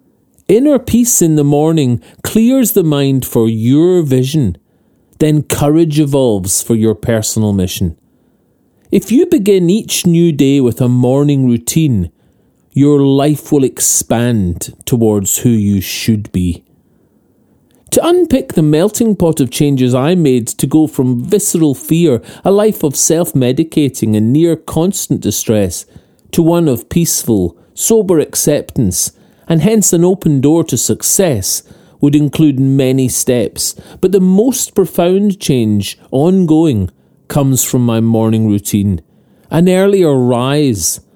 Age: 40-59